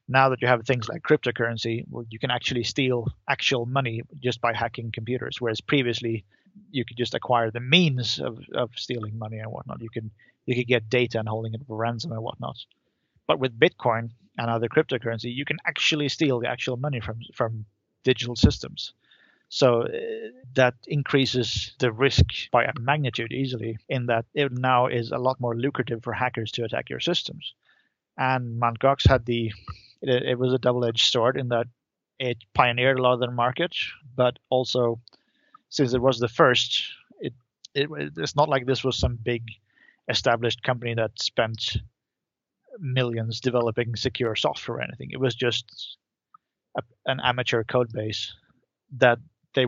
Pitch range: 115-130 Hz